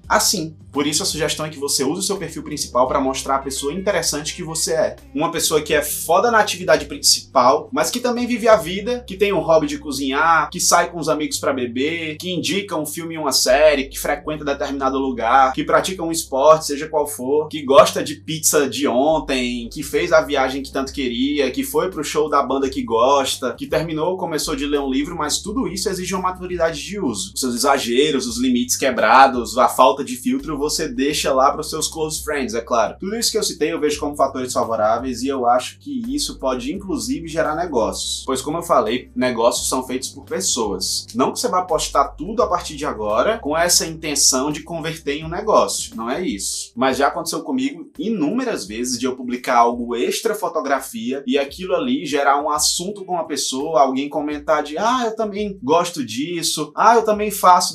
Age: 20-39